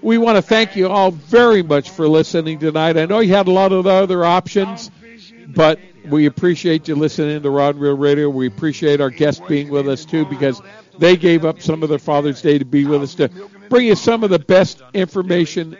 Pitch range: 150-195 Hz